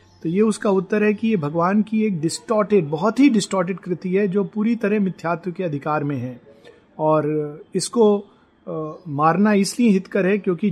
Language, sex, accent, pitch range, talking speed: Hindi, male, native, 160-205 Hz, 180 wpm